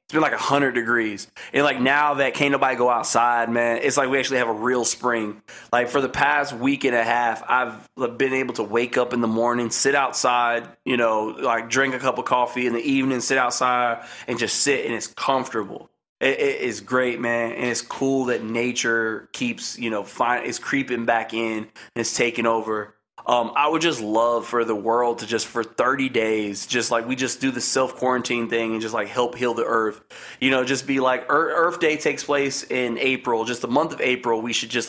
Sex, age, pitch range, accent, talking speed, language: male, 20-39, 115-135 Hz, American, 225 wpm, English